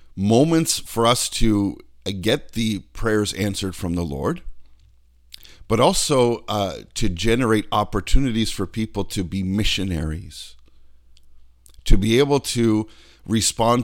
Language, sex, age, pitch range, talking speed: English, male, 50-69, 90-115 Hz, 115 wpm